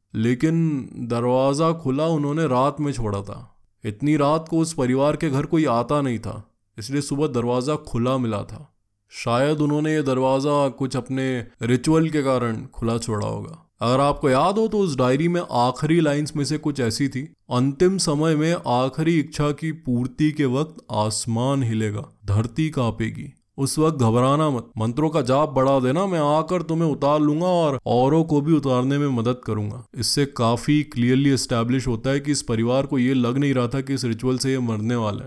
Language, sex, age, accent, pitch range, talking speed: Hindi, male, 20-39, native, 120-150 Hz, 180 wpm